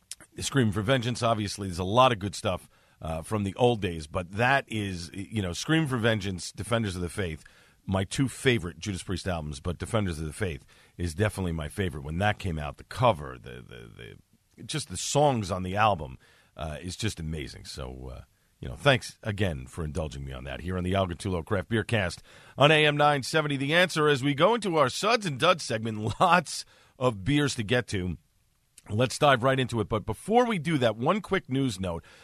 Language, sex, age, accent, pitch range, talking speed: English, male, 50-69, American, 100-140 Hz, 210 wpm